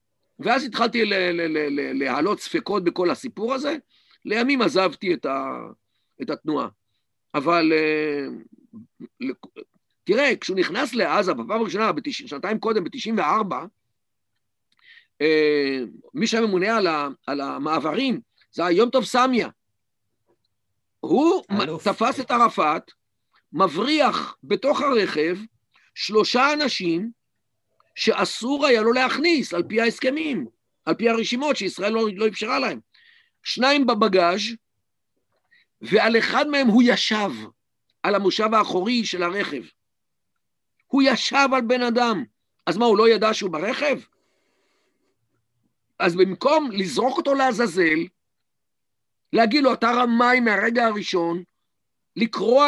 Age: 50-69